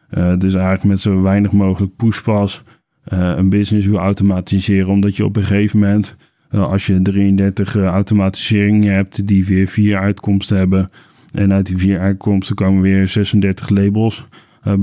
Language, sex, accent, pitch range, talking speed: Dutch, male, Dutch, 95-105 Hz, 160 wpm